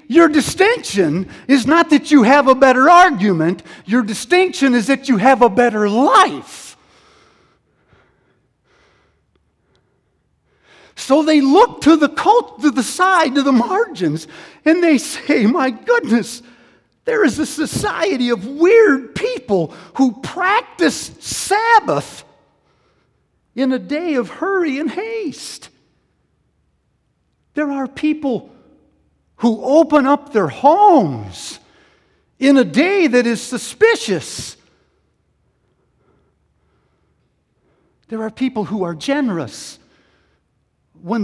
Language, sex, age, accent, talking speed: English, male, 50-69, American, 110 wpm